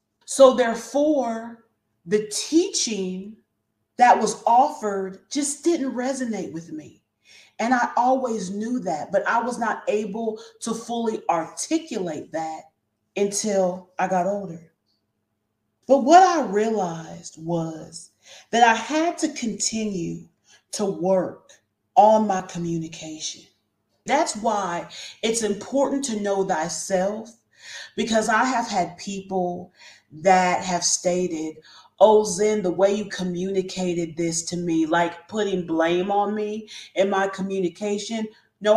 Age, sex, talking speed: 30-49, female, 120 wpm